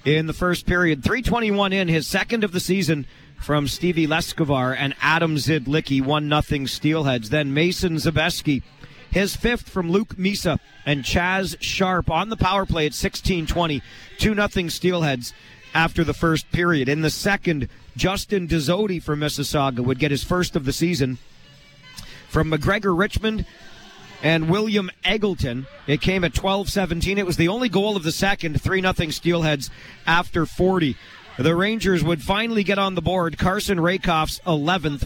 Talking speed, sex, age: 155 wpm, male, 40-59